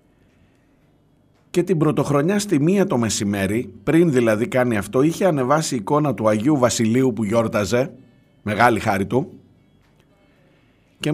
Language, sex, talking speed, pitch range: Greek, male, 125 wpm, 110-145 Hz